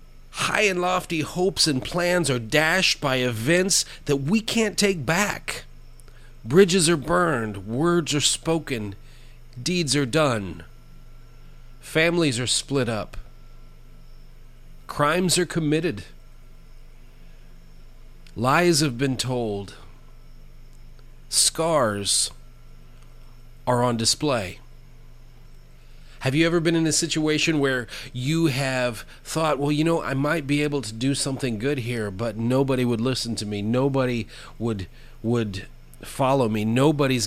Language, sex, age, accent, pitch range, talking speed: English, male, 40-59, American, 110-145 Hz, 120 wpm